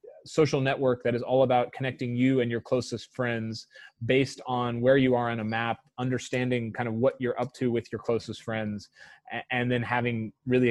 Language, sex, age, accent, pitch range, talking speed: English, male, 20-39, American, 110-125 Hz, 195 wpm